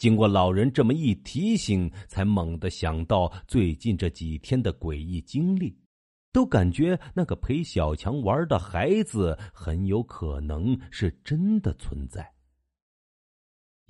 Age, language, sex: 50-69, Chinese, male